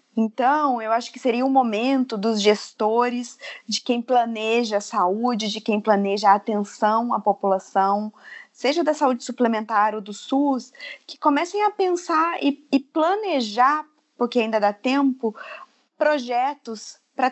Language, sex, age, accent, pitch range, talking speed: Portuguese, female, 20-39, Brazilian, 205-265 Hz, 145 wpm